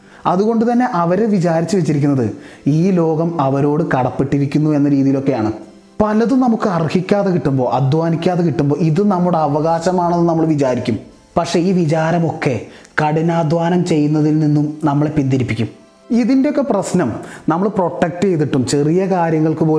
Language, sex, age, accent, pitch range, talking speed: Malayalam, male, 30-49, native, 140-185 Hz, 110 wpm